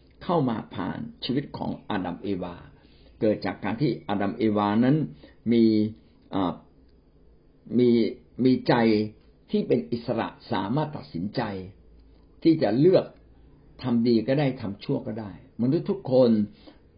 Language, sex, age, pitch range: Thai, male, 60-79, 105-140 Hz